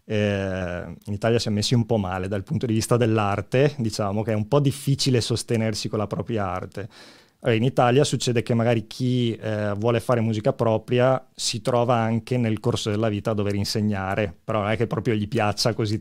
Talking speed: 200 wpm